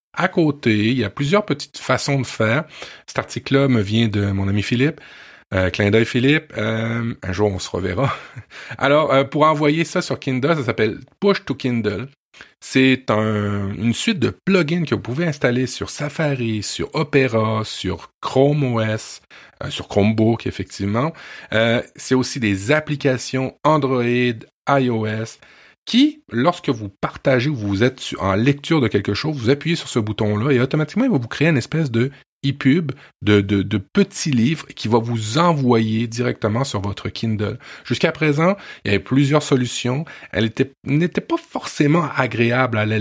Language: French